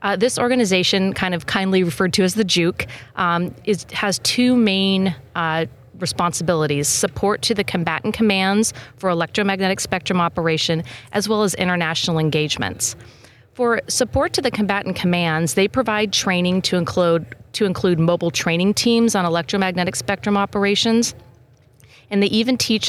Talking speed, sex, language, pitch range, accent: 140 wpm, female, English, 165-200 Hz, American